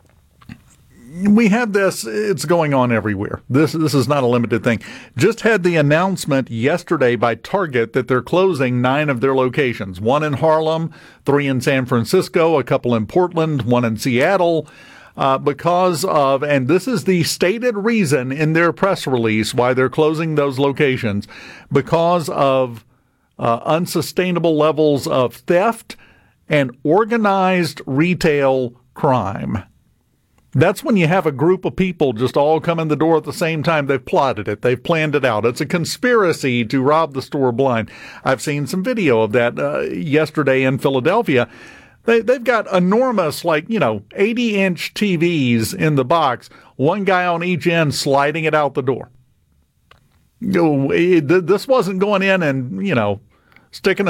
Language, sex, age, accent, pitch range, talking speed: English, male, 50-69, American, 125-180 Hz, 160 wpm